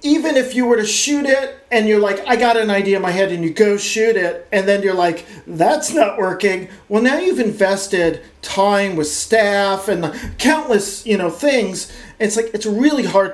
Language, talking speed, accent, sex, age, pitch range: English, 210 wpm, American, male, 40-59, 175-240 Hz